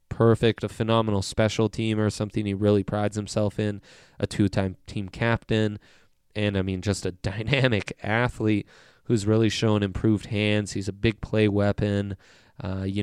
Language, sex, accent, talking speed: English, male, American, 160 wpm